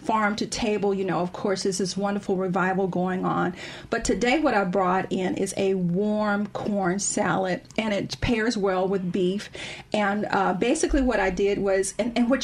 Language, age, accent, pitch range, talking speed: English, 40-59, American, 190-225 Hz, 195 wpm